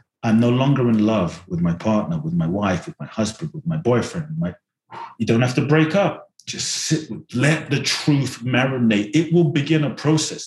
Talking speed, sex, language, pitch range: 205 wpm, male, English, 120-165 Hz